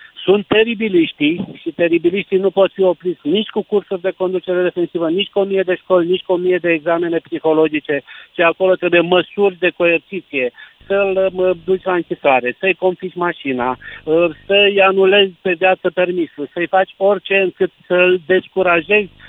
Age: 50-69